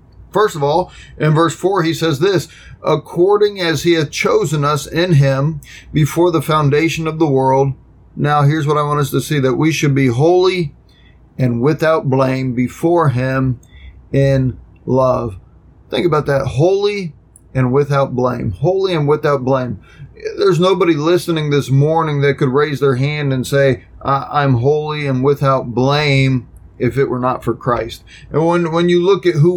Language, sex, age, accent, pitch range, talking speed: English, male, 30-49, American, 135-160 Hz, 175 wpm